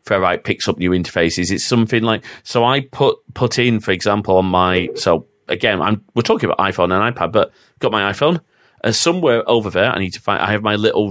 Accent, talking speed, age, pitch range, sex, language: British, 230 wpm, 30-49, 95-120 Hz, male, English